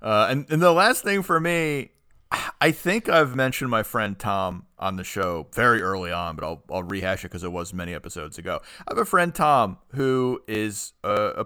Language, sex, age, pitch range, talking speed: English, male, 40-59, 100-130 Hz, 215 wpm